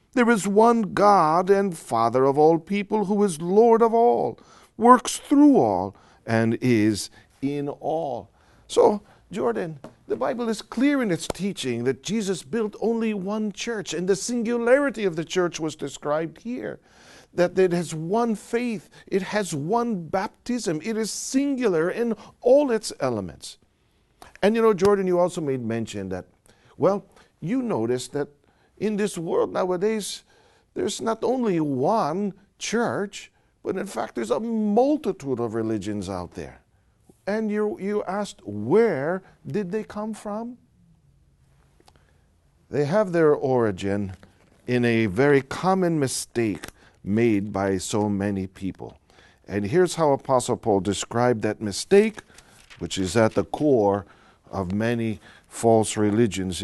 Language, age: English, 50-69